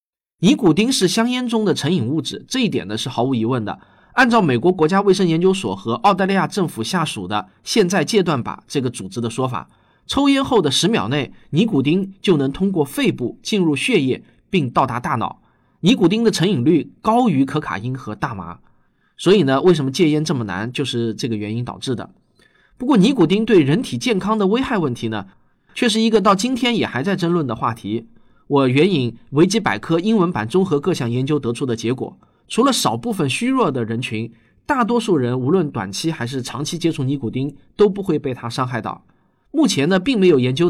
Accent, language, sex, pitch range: native, Chinese, male, 120-200 Hz